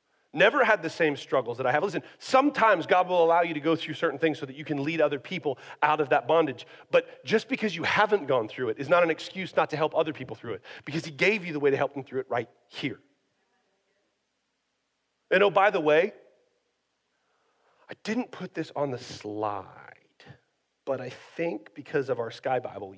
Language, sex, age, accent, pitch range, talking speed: English, male, 40-59, American, 140-215 Hz, 215 wpm